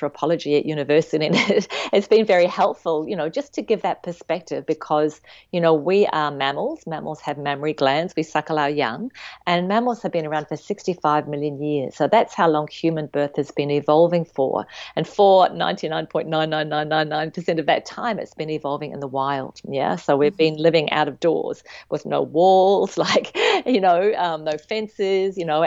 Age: 40-59